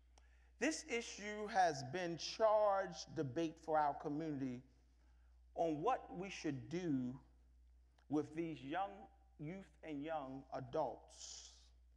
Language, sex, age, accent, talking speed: English, male, 40-59, American, 105 wpm